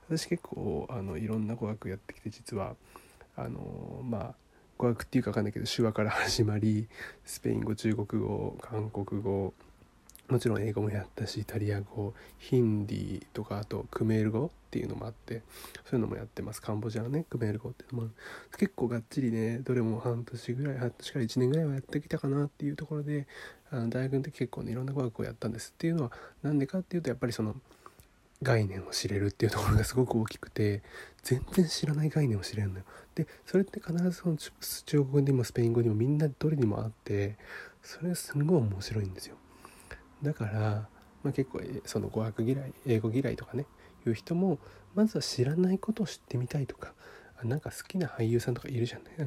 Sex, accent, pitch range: male, native, 110-140 Hz